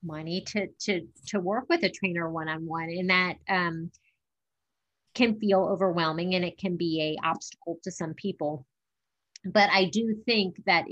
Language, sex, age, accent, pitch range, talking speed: English, female, 30-49, American, 165-195 Hz, 160 wpm